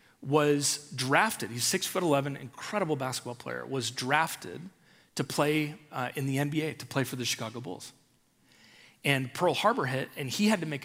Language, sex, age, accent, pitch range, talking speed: English, male, 40-59, American, 130-180 Hz, 175 wpm